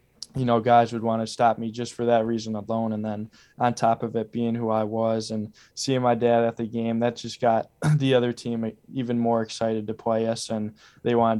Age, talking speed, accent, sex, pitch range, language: 10-29, 235 wpm, American, male, 110-120 Hz, English